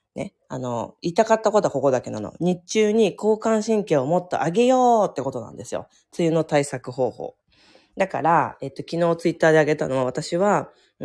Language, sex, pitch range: Japanese, female, 130-205 Hz